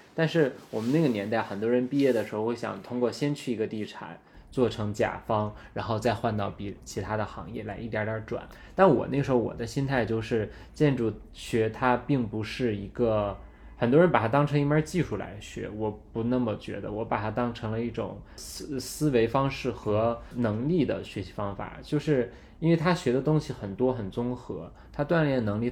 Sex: male